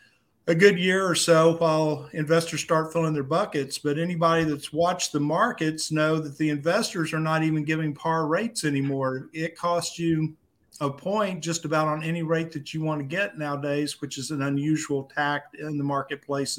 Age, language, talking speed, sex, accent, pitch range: 50-69, English, 190 wpm, male, American, 140-165 Hz